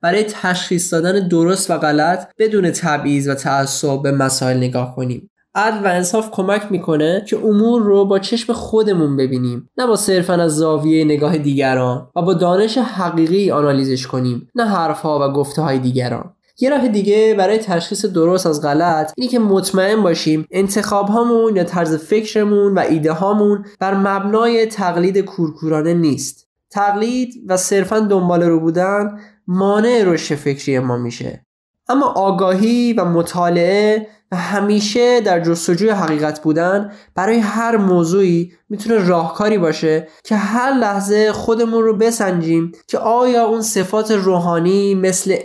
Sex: male